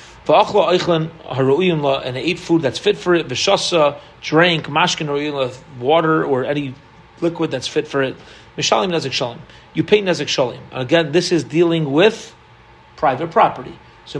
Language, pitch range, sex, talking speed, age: English, 140-180 Hz, male, 125 wpm, 40-59